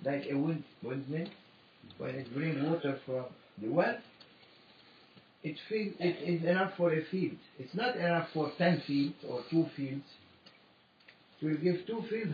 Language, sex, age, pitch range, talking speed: English, male, 60-79, 140-185 Hz, 160 wpm